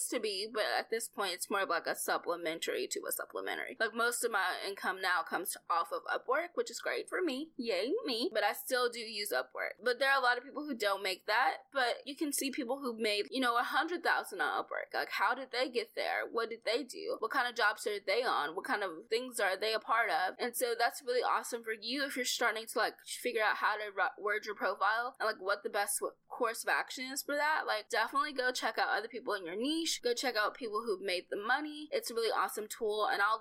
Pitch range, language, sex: 220-315 Hz, English, female